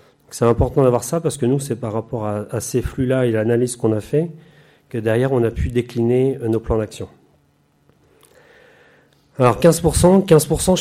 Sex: male